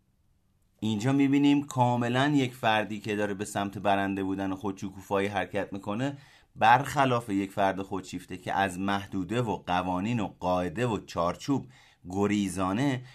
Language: Persian